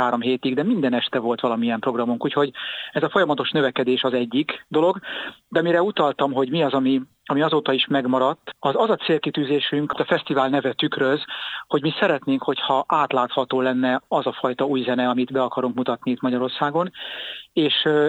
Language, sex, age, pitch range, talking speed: Hungarian, male, 40-59, 125-150 Hz, 175 wpm